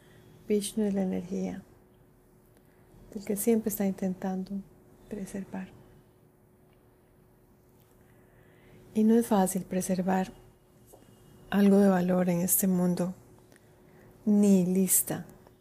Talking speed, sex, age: 85 wpm, female, 30-49